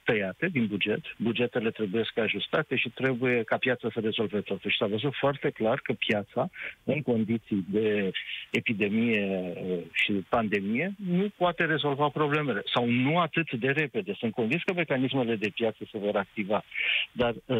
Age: 50-69